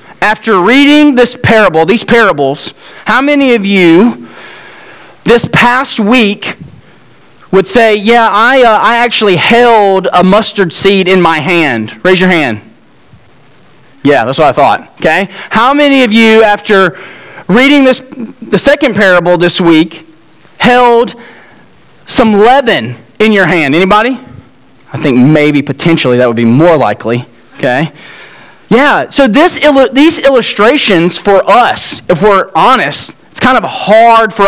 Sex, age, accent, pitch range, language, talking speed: male, 30-49, American, 180-250 Hz, English, 140 wpm